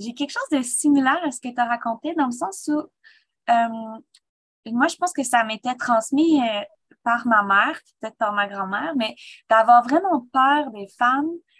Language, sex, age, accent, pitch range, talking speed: French, female, 20-39, Canadian, 220-280 Hz, 190 wpm